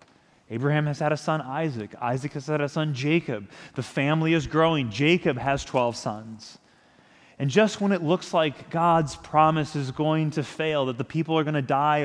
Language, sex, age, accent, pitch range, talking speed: English, male, 30-49, American, 135-175 Hz, 195 wpm